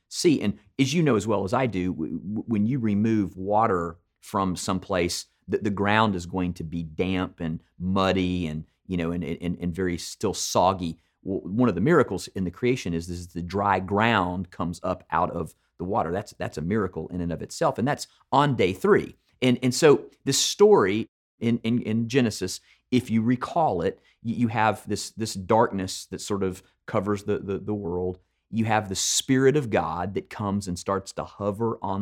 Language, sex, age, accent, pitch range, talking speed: English, male, 40-59, American, 90-110 Hz, 200 wpm